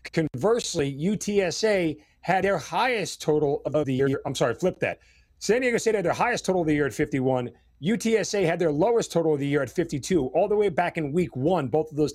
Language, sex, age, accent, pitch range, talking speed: English, male, 40-59, American, 140-175 Hz, 220 wpm